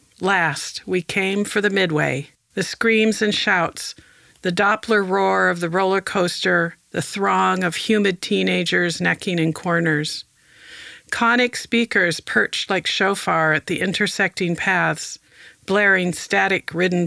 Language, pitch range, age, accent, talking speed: English, 165-200 Hz, 50-69, American, 125 wpm